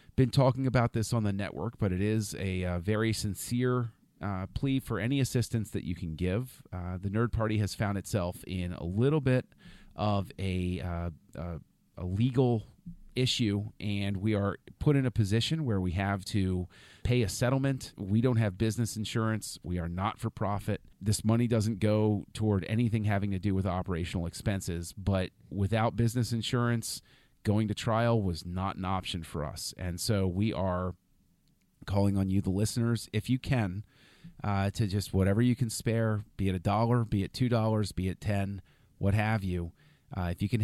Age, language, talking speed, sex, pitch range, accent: 40-59, English, 185 wpm, male, 95-115 Hz, American